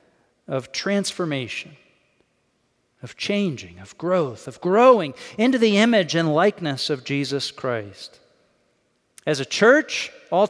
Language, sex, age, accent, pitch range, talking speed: English, male, 40-59, American, 140-185 Hz, 115 wpm